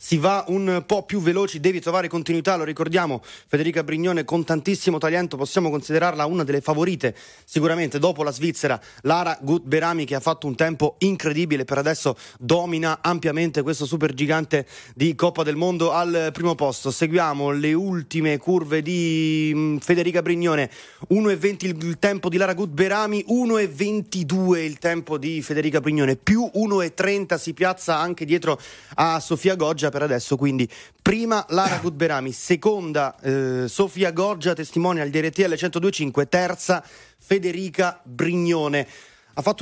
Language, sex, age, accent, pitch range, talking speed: Italian, male, 30-49, native, 140-175 Hz, 140 wpm